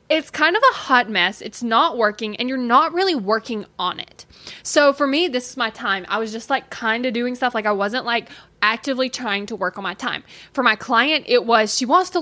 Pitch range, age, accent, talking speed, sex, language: 215-275 Hz, 10-29, American, 245 wpm, female, English